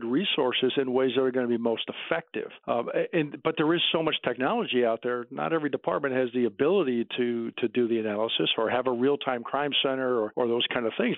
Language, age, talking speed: English, 50-69, 235 wpm